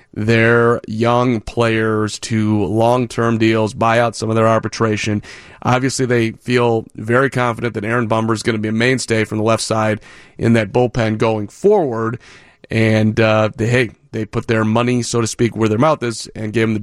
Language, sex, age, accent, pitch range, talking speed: English, male, 30-49, American, 110-125 Hz, 195 wpm